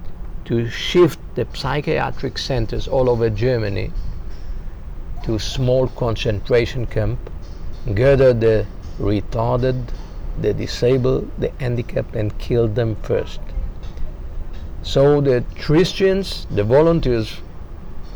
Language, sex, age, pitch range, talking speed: English, male, 50-69, 85-120 Hz, 95 wpm